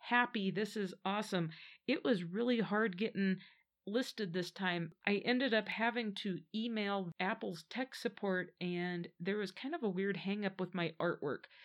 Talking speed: 170 wpm